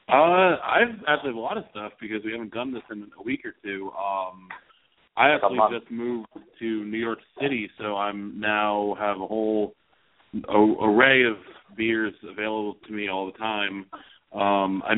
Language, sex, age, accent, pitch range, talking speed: English, male, 30-49, American, 105-120 Hz, 185 wpm